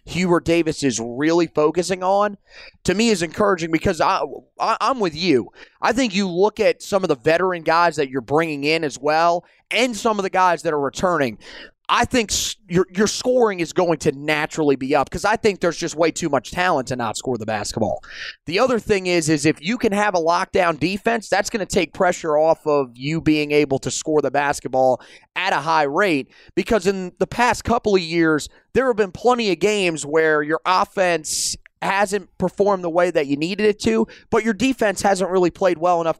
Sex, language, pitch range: male, English, 155-205 Hz